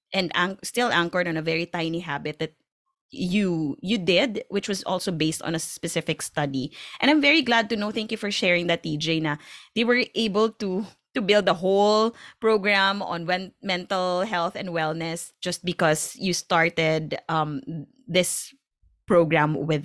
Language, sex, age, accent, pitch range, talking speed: Filipino, female, 20-39, native, 170-225 Hz, 165 wpm